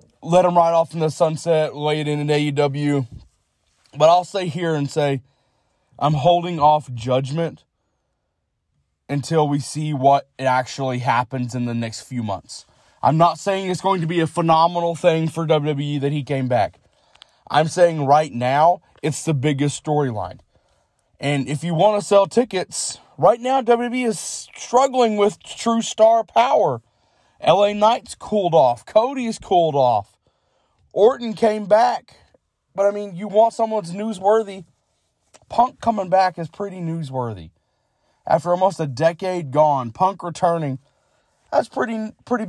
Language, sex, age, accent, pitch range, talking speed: English, male, 20-39, American, 140-190 Hz, 150 wpm